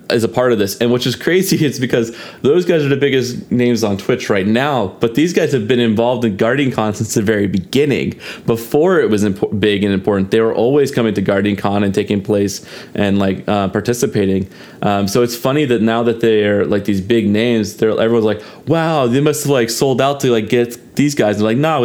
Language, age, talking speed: English, 20-39, 240 wpm